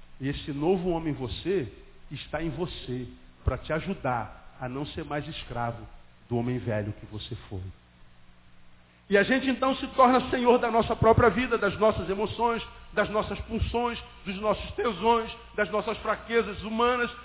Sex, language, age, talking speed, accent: male, Portuguese, 50-69, 165 wpm, Brazilian